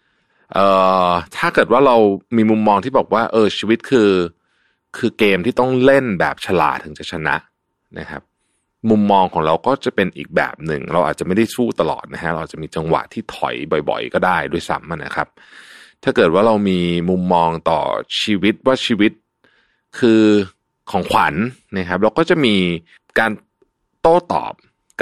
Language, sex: Thai, male